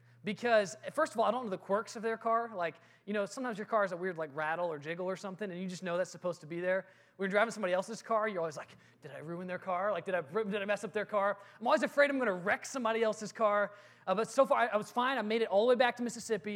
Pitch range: 170-225 Hz